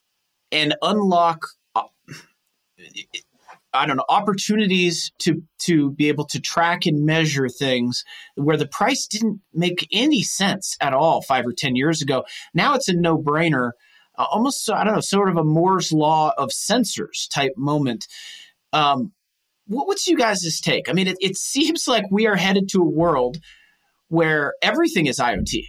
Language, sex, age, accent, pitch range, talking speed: English, male, 30-49, American, 150-205 Hz, 155 wpm